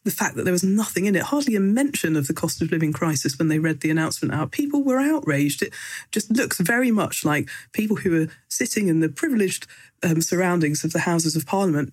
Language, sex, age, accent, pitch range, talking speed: English, female, 40-59, British, 155-200 Hz, 230 wpm